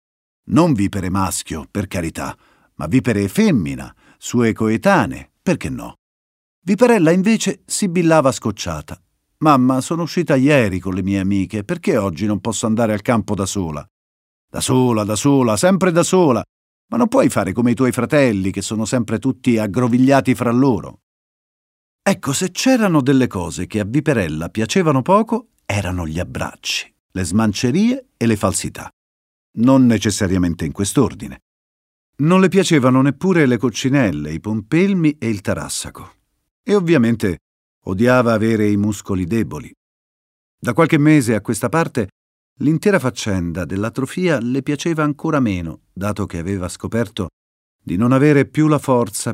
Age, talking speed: 50-69, 145 wpm